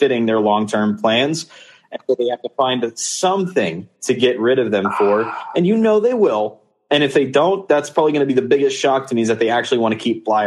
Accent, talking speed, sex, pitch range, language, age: American, 250 wpm, male, 120-165 Hz, English, 30-49